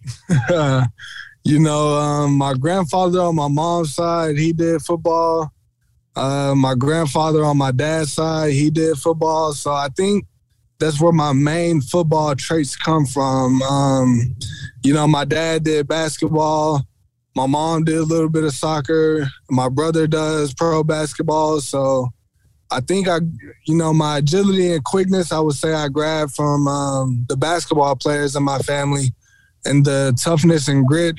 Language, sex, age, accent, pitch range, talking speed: English, male, 20-39, American, 135-155 Hz, 155 wpm